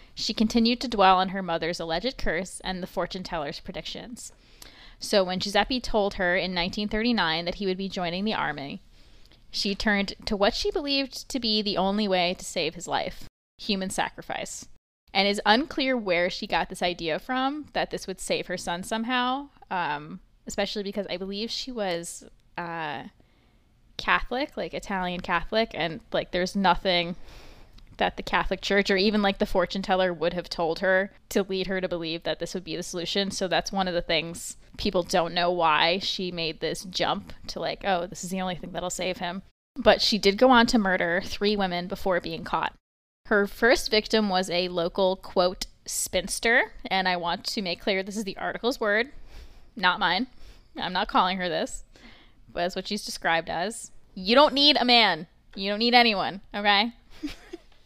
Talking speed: 190 wpm